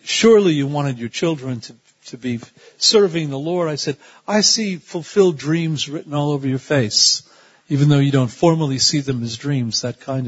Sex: male